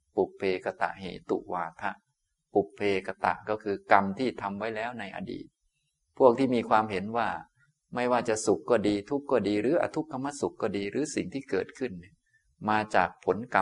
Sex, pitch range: male, 90-110 Hz